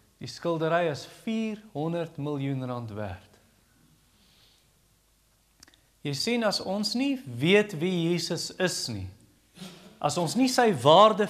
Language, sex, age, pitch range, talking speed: English, male, 40-59, 120-180 Hz, 115 wpm